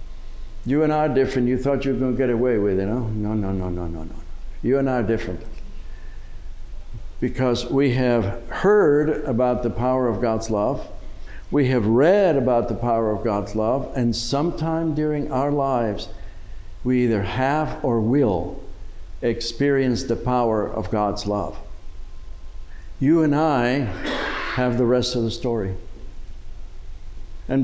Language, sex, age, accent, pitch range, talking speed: English, male, 60-79, American, 95-135 Hz, 160 wpm